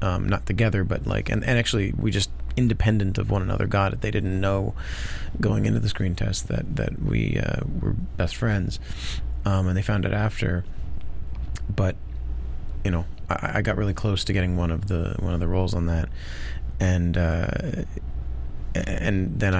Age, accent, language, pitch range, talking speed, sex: 30-49, American, English, 70-100 Hz, 185 wpm, male